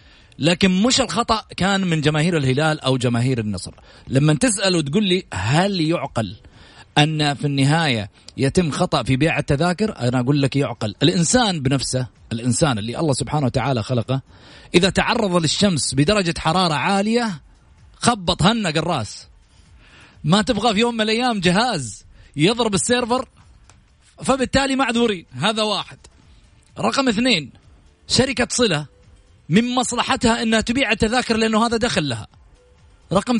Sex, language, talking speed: male, Arabic, 130 wpm